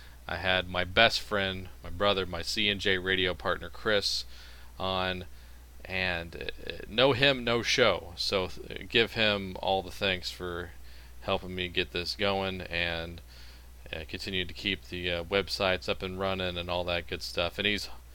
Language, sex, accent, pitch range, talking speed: English, male, American, 85-95 Hz, 165 wpm